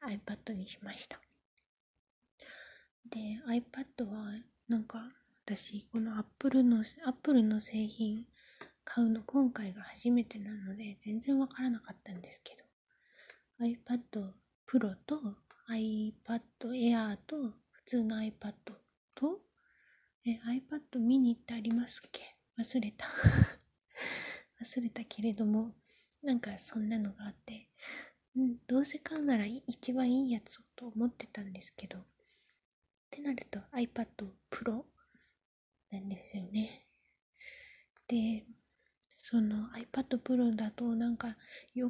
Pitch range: 215-245 Hz